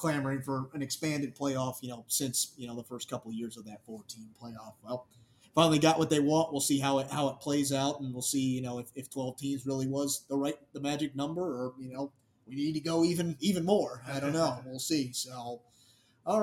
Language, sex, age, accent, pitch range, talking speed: English, male, 30-49, American, 120-145 Hz, 240 wpm